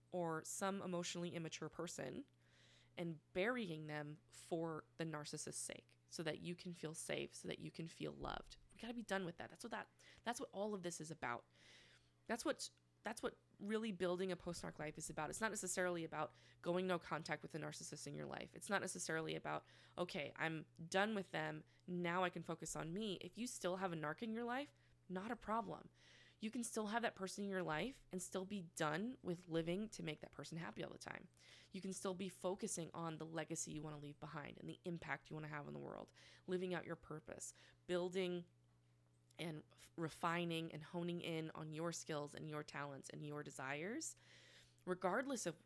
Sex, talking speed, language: female, 210 wpm, English